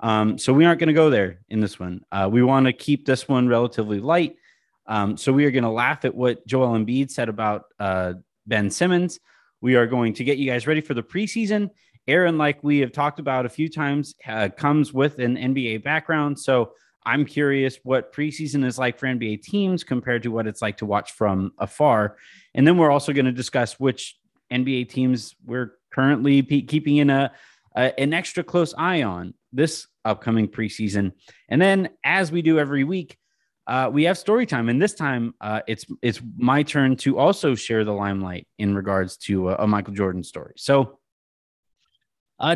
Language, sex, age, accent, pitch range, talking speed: English, male, 30-49, American, 110-150 Hz, 200 wpm